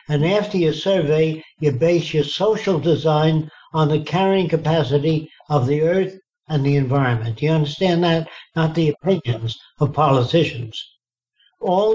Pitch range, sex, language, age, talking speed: 140-175 Hz, male, English, 60-79, 145 wpm